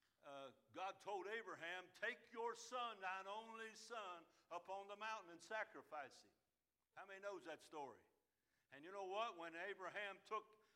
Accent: American